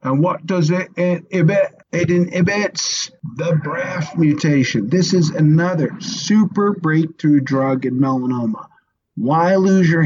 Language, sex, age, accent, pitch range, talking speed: English, male, 50-69, American, 125-170 Hz, 125 wpm